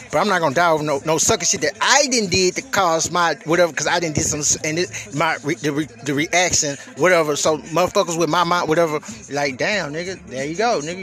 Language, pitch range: English, 145-175 Hz